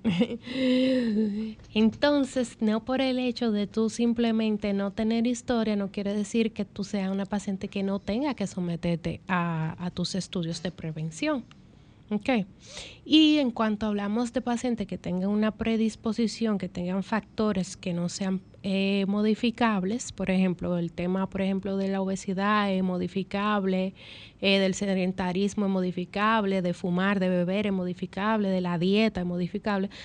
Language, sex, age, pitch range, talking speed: Spanish, female, 30-49, 185-220 Hz, 150 wpm